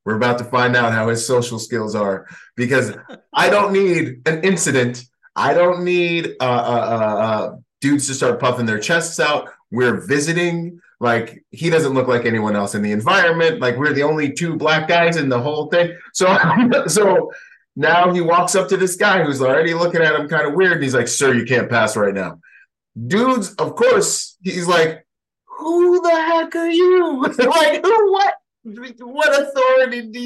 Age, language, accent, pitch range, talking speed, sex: 30-49, English, American, 155-240 Hz, 185 wpm, male